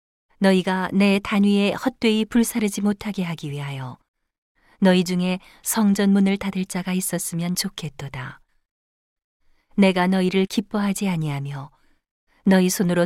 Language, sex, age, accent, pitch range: Korean, female, 40-59, native, 155-200 Hz